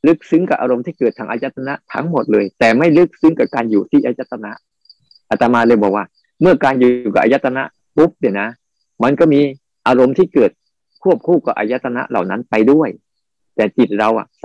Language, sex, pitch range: Thai, male, 115-150 Hz